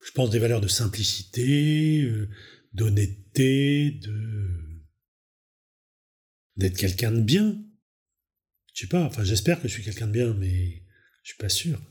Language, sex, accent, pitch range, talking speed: French, male, French, 95-140 Hz, 150 wpm